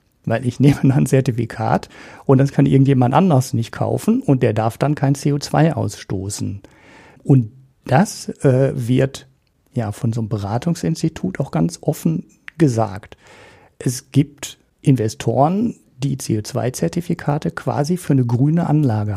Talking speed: 130 wpm